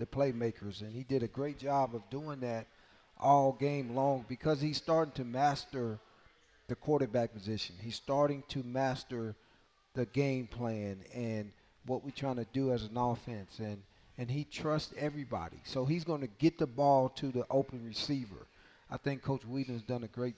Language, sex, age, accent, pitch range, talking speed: English, male, 40-59, American, 115-140 Hz, 185 wpm